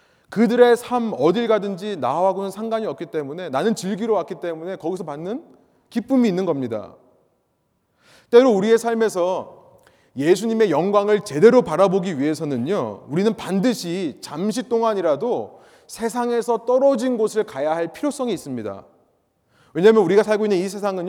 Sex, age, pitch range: male, 30-49, 165-230 Hz